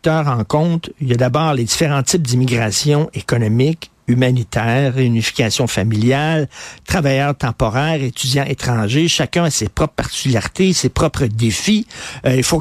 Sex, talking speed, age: male, 140 wpm, 50-69